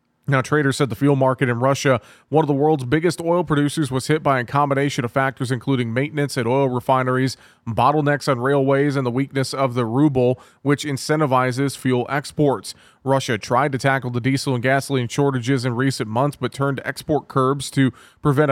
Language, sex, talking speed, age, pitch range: English, male, 190 wpm, 30-49, 130-145 Hz